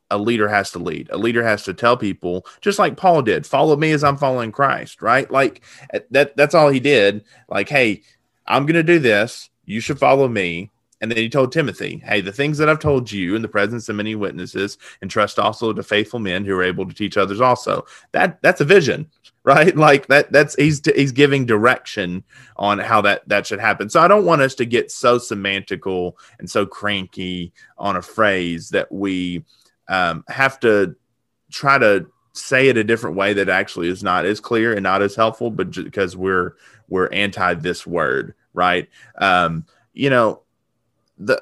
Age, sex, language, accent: 30-49, male, English, American